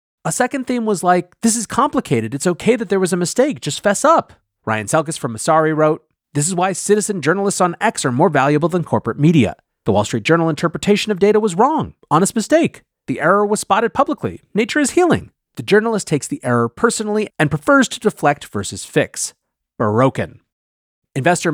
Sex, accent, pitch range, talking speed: male, American, 140-210 Hz, 190 wpm